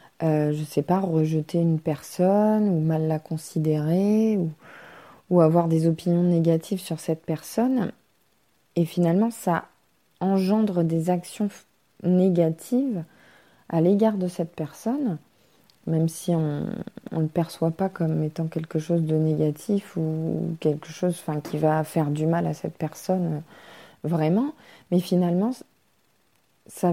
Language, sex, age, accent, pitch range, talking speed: French, female, 20-39, French, 155-185 Hz, 135 wpm